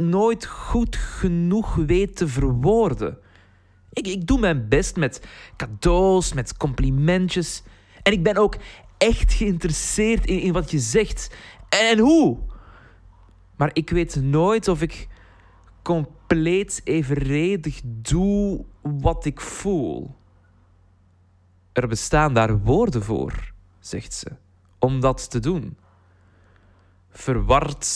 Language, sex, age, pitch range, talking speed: Dutch, male, 20-39, 95-150 Hz, 115 wpm